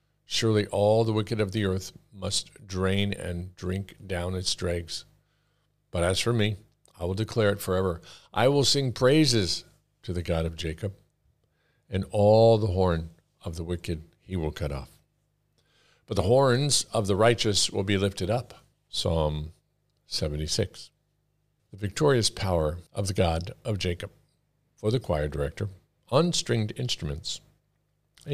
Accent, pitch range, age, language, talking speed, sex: American, 90-125 Hz, 50-69, English, 150 wpm, male